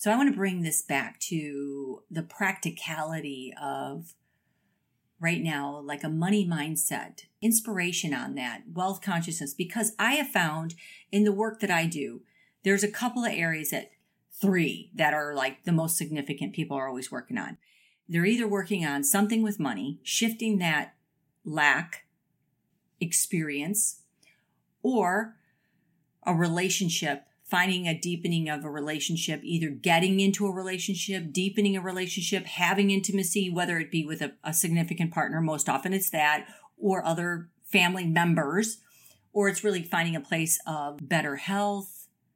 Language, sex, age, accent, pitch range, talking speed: English, female, 40-59, American, 155-195 Hz, 150 wpm